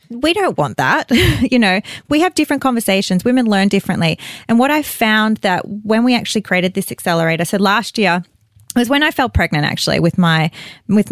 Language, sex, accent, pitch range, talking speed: English, female, Australian, 175-225 Hz, 200 wpm